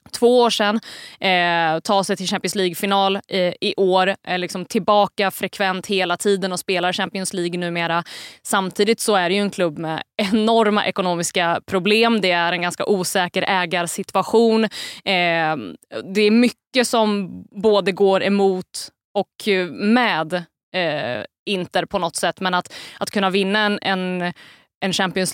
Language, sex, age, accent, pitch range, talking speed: Swedish, female, 20-39, native, 180-210 Hz, 140 wpm